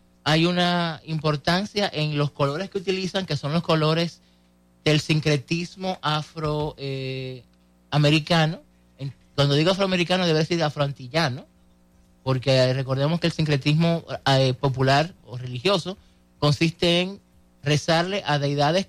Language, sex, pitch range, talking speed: Spanish, male, 130-165 Hz, 115 wpm